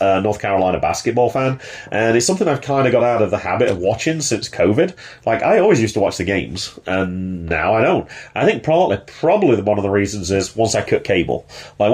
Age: 30-49